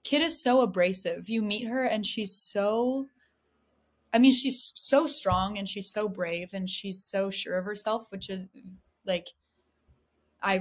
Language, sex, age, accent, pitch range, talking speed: English, female, 20-39, American, 185-215 Hz, 165 wpm